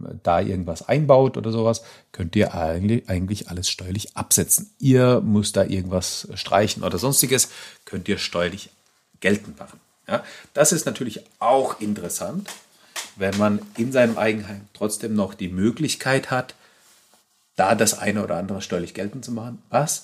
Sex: male